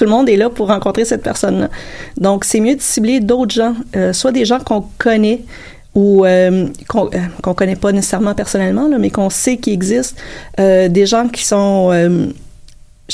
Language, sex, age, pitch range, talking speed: French, female, 30-49, 195-240 Hz, 195 wpm